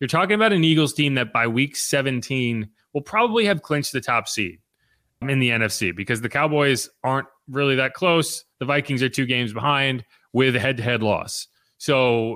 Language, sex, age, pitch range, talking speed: English, male, 30-49, 125-170 Hz, 185 wpm